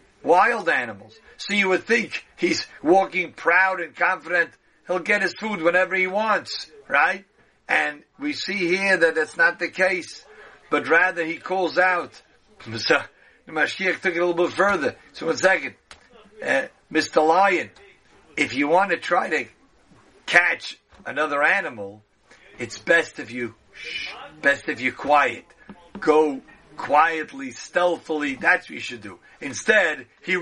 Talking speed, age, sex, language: 145 wpm, 50-69, male, English